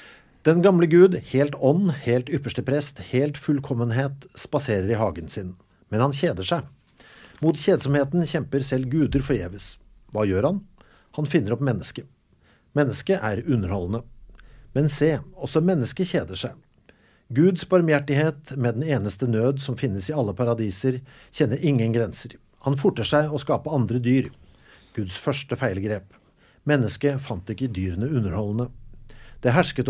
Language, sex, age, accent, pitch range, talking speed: English, male, 50-69, Norwegian, 115-150 Hz, 140 wpm